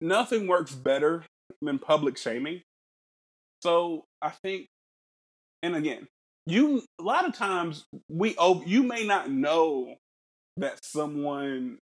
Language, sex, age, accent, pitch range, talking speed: English, male, 20-39, American, 135-195 Hz, 120 wpm